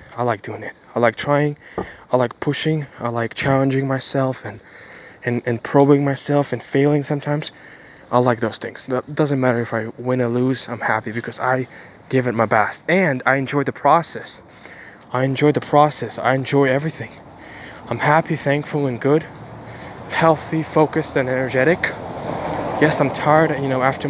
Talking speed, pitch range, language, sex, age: 170 wpm, 125-150 Hz, English, male, 10-29